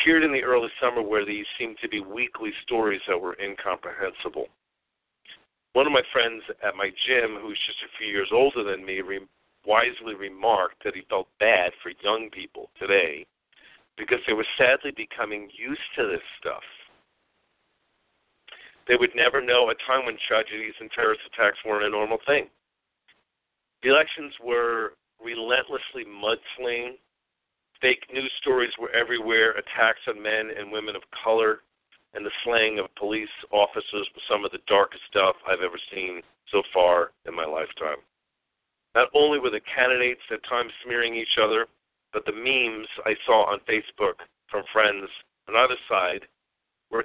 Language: English